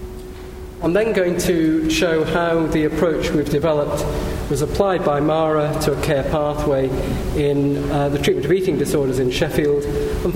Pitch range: 140-170 Hz